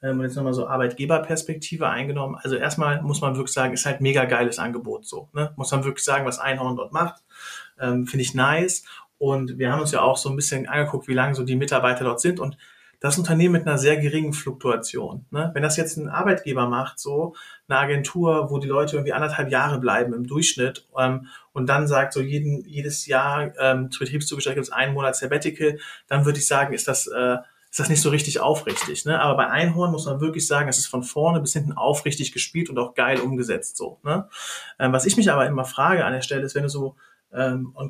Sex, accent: male, German